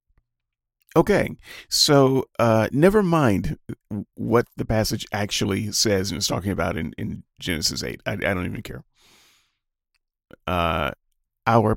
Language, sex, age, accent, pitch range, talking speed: English, male, 40-59, American, 90-135 Hz, 125 wpm